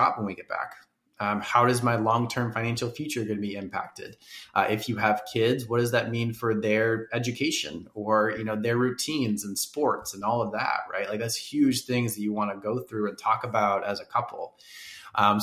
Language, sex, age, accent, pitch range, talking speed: English, male, 20-39, American, 105-115 Hz, 220 wpm